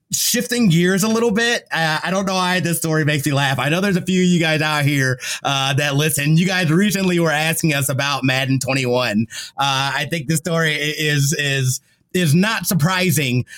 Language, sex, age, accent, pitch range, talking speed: English, male, 30-49, American, 135-180 Hz, 210 wpm